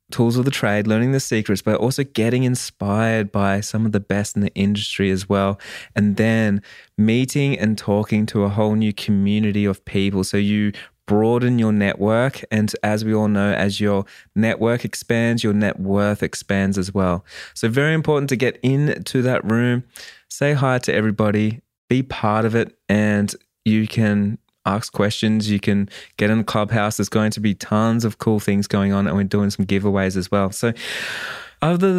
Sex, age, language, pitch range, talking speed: male, 20-39, English, 105-130 Hz, 185 wpm